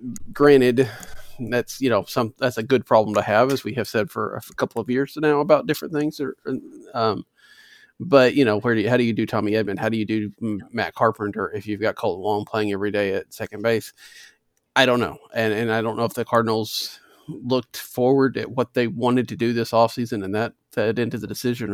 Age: 40-59